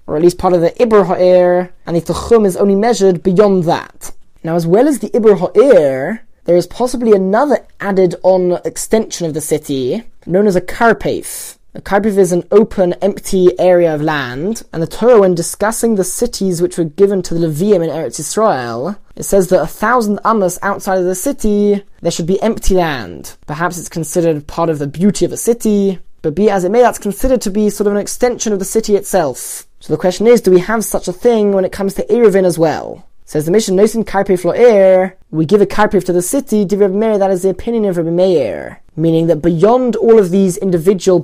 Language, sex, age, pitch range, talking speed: English, male, 20-39, 175-215 Hz, 215 wpm